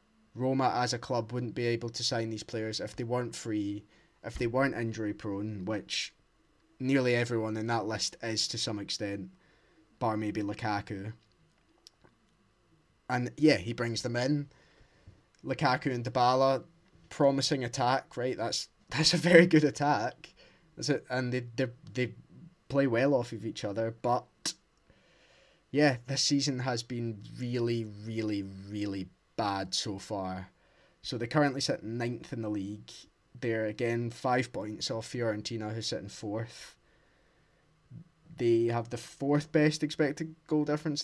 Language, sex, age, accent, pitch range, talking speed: English, male, 20-39, British, 110-140 Hz, 145 wpm